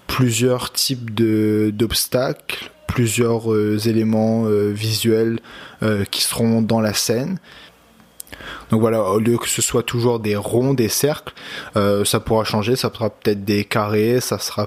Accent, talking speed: French, 155 wpm